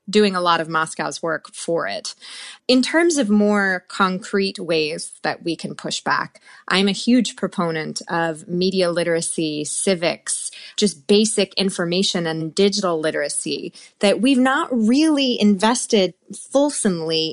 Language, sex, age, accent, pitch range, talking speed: English, female, 20-39, American, 175-225 Hz, 135 wpm